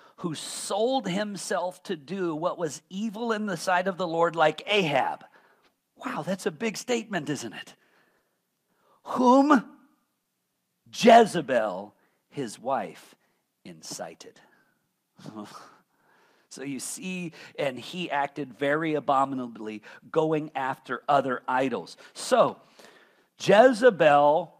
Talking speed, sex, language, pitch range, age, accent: 100 wpm, male, English, 160-220 Hz, 50-69, American